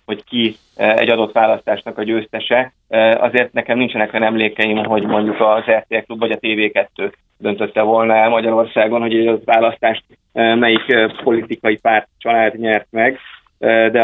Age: 30-49